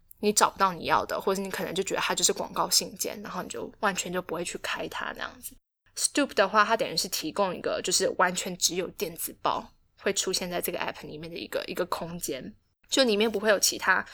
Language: Chinese